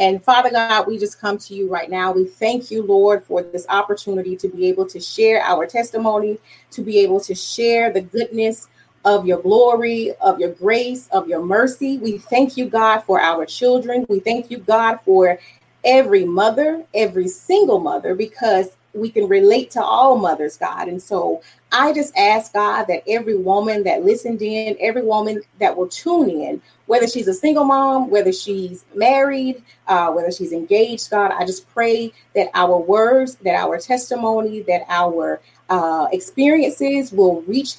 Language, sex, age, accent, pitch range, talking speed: English, female, 30-49, American, 190-245 Hz, 175 wpm